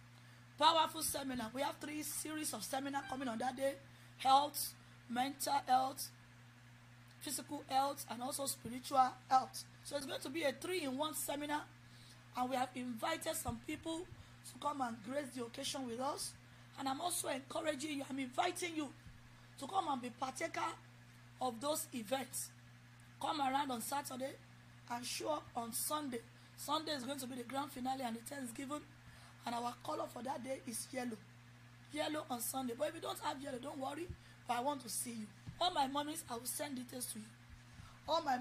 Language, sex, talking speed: English, female, 180 wpm